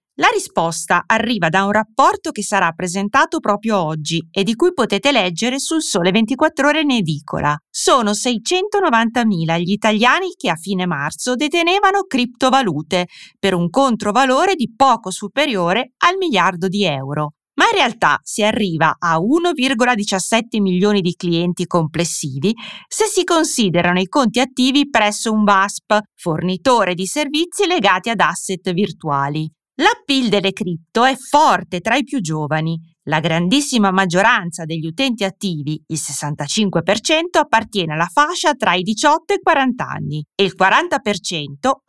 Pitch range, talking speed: 175-265 Hz, 140 wpm